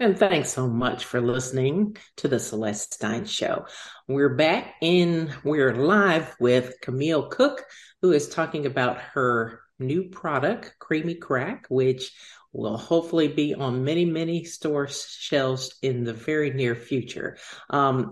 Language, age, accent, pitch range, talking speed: English, 50-69, American, 125-165 Hz, 140 wpm